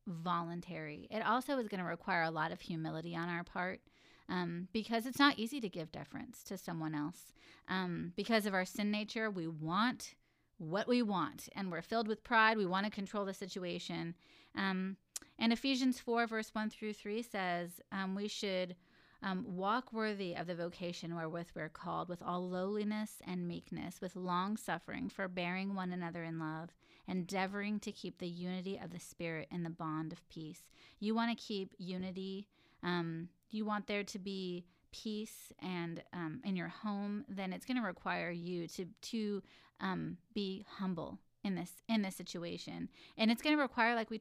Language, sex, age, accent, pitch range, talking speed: English, female, 30-49, American, 175-215 Hz, 185 wpm